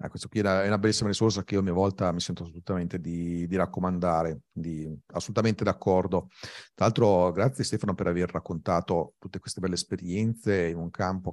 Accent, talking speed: native, 185 wpm